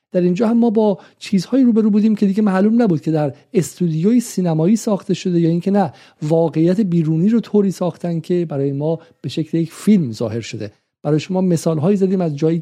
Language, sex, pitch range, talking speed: Persian, male, 150-185 Hz, 195 wpm